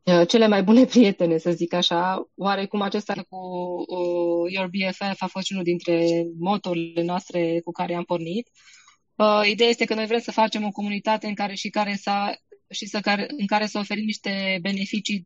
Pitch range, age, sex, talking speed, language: 185-205 Hz, 20-39, female, 185 wpm, Romanian